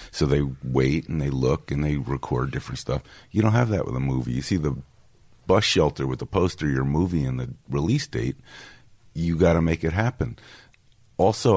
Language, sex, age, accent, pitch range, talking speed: English, male, 50-69, American, 70-100 Hz, 200 wpm